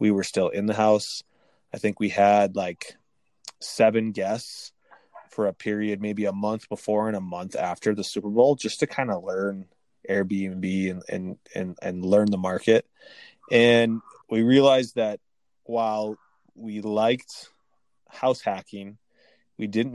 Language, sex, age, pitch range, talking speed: English, male, 20-39, 100-110 Hz, 155 wpm